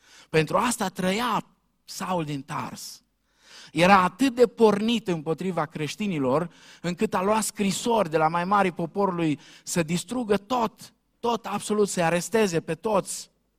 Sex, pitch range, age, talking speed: male, 135-195 Hz, 50-69, 135 wpm